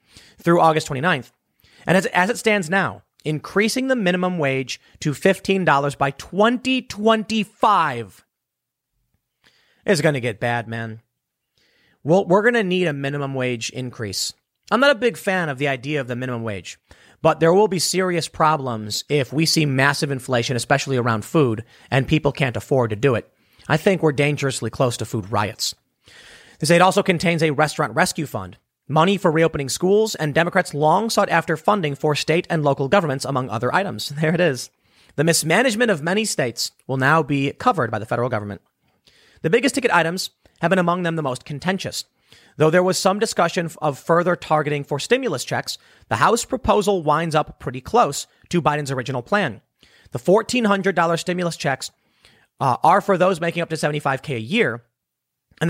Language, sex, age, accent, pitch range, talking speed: English, male, 30-49, American, 135-185 Hz, 180 wpm